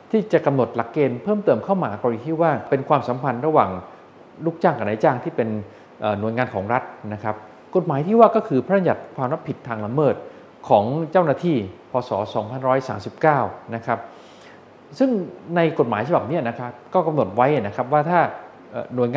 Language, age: Thai, 20-39